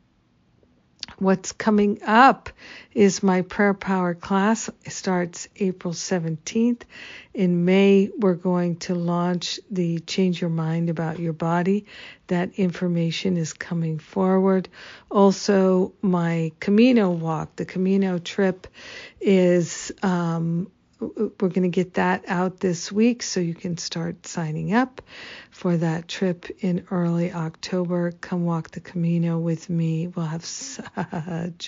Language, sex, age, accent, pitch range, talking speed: English, female, 50-69, American, 165-195 Hz, 130 wpm